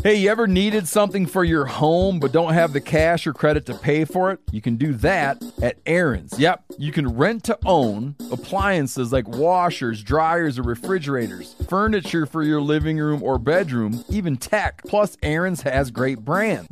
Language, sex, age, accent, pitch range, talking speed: English, male, 40-59, American, 125-180 Hz, 185 wpm